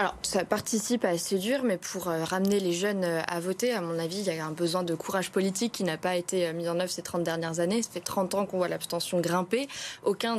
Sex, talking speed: female, 265 wpm